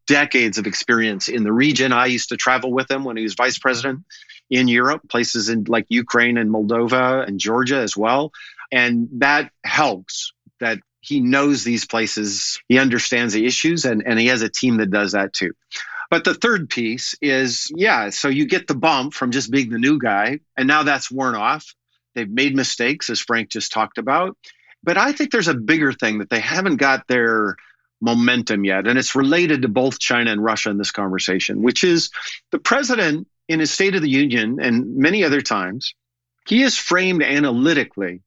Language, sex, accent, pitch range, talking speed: English, male, American, 110-145 Hz, 195 wpm